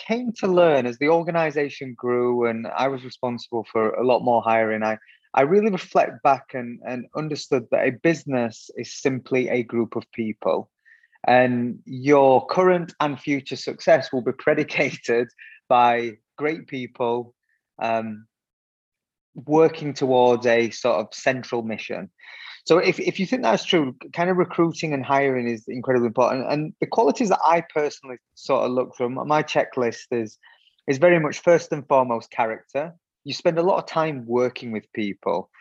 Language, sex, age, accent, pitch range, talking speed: English, male, 20-39, British, 120-150 Hz, 165 wpm